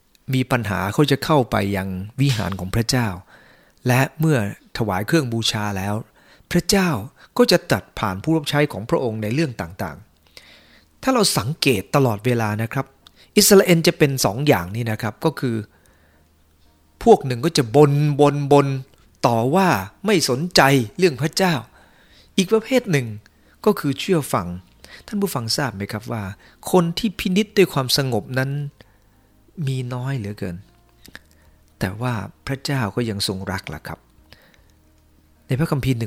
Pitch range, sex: 100-145 Hz, male